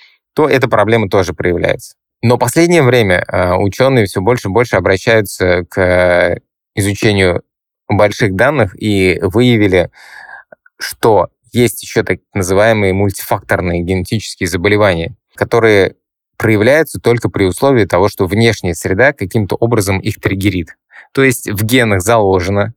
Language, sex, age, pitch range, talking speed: Russian, male, 20-39, 95-120 Hz, 125 wpm